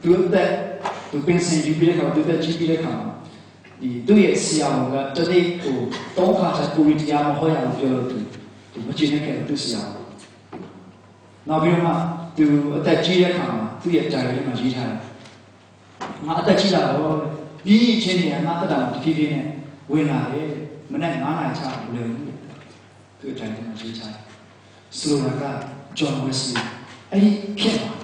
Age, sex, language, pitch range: 40-59, male, English, 130-175 Hz